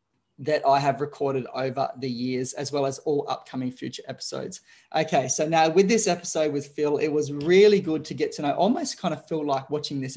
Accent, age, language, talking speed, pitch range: Australian, 20-39, English, 220 wpm, 140-160 Hz